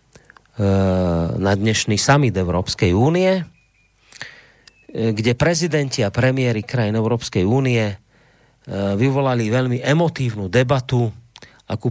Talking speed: 85 wpm